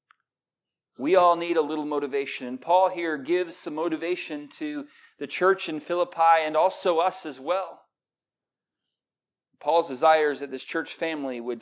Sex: male